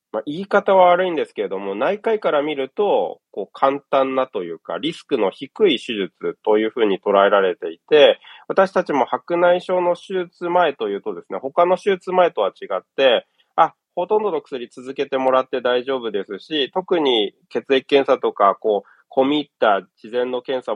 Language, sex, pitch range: Japanese, male, 135-200 Hz